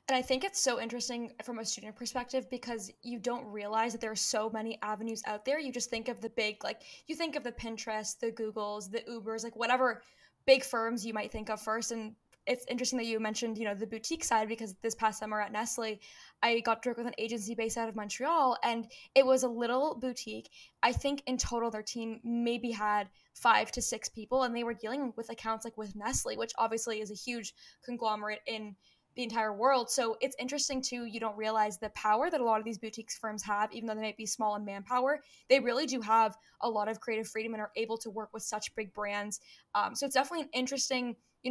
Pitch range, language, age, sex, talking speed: 215-245 Hz, English, 10-29, female, 235 wpm